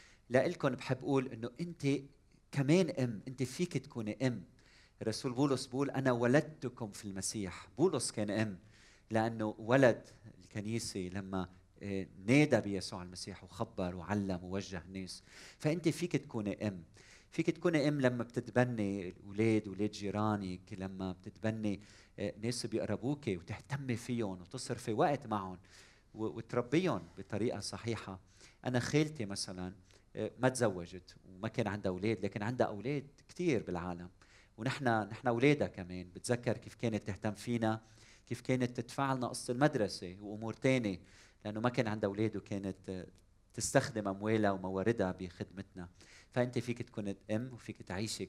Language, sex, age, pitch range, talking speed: Arabic, male, 40-59, 100-125 Hz, 130 wpm